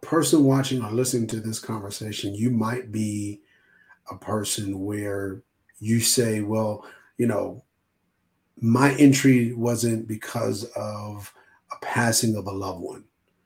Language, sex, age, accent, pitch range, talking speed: English, male, 40-59, American, 110-130 Hz, 130 wpm